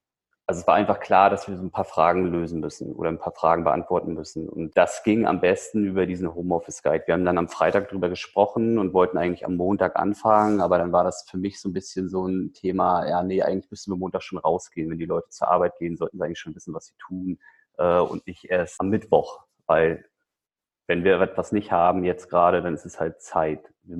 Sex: male